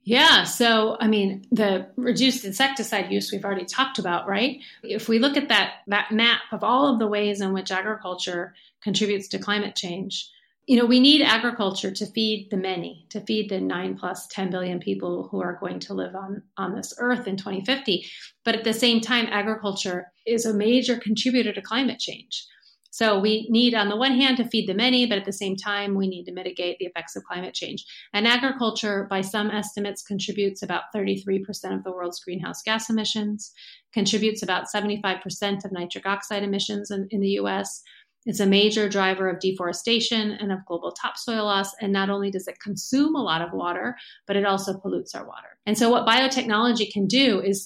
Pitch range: 195-225 Hz